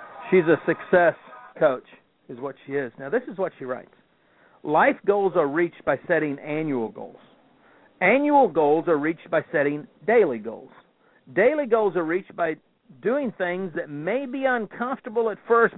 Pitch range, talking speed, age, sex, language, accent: 135-185 Hz, 165 wpm, 50-69, male, English, American